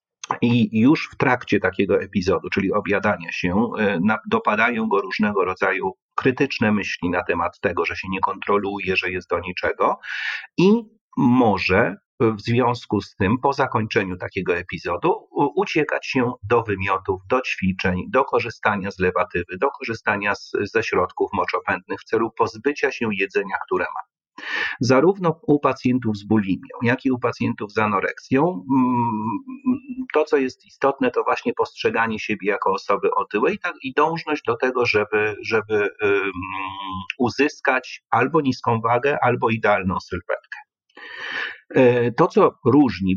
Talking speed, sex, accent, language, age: 135 wpm, male, native, Polish, 40-59